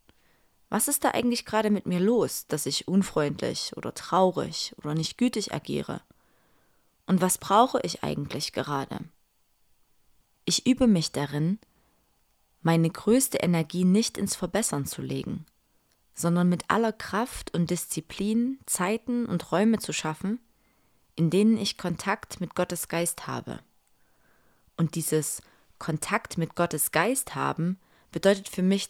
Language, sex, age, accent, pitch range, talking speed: German, female, 20-39, German, 165-225 Hz, 135 wpm